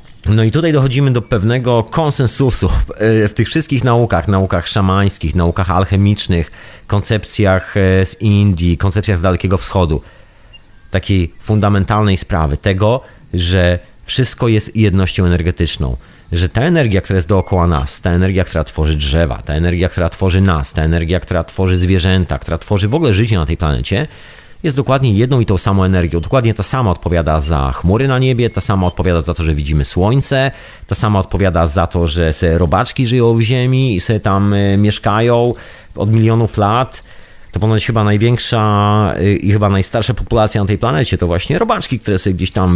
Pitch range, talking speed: 90-110 Hz, 165 wpm